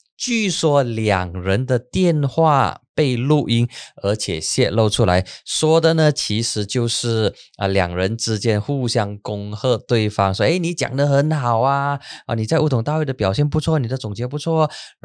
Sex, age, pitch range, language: male, 20-39, 110-155 Hz, Chinese